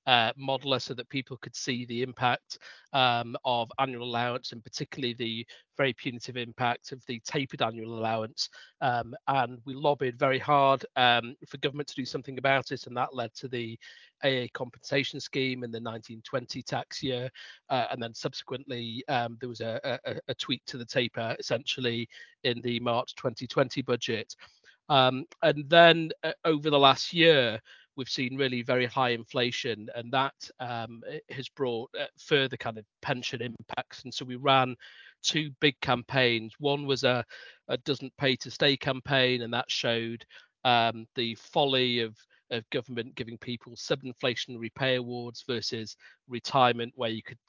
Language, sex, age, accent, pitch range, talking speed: English, male, 40-59, British, 120-135 Hz, 165 wpm